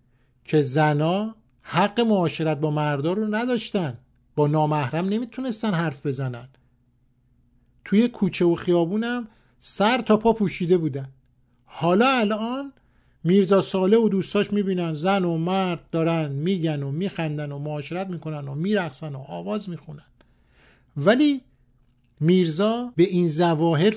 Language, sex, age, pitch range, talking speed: Persian, male, 50-69, 140-195 Hz, 125 wpm